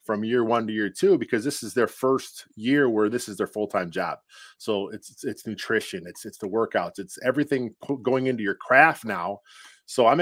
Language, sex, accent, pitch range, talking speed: English, male, American, 115-135 Hz, 205 wpm